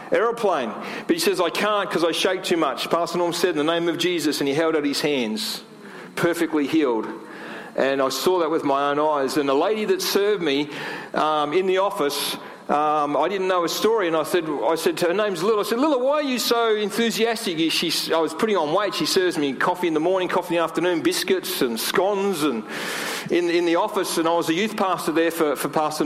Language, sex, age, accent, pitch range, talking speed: English, male, 40-59, Australian, 160-205 Hz, 240 wpm